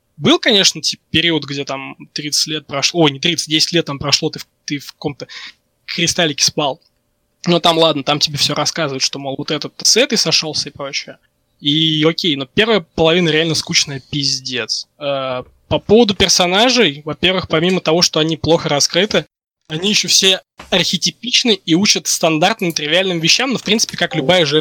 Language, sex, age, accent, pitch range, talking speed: Russian, male, 20-39, native, 150-180 Hz, 175 wpm